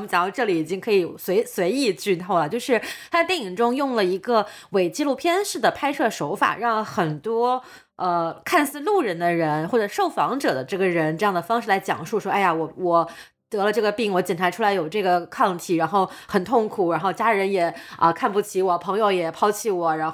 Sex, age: female, 20-39